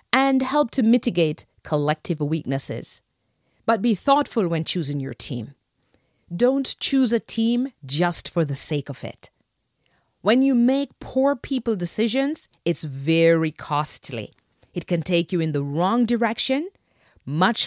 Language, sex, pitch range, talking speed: English, female, 155-235 Hz, 140 wpm